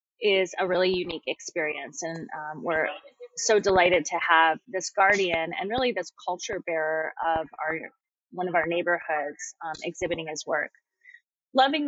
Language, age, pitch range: English, 20-39, 170-215 Hz